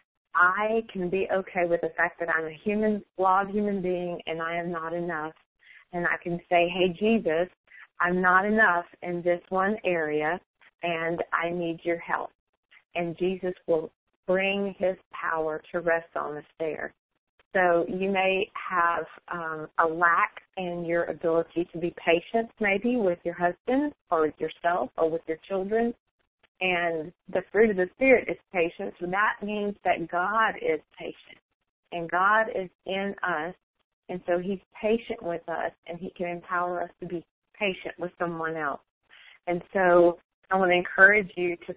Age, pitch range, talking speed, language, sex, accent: 40-59, 170-195 Hz, 165 wpm, English, female, American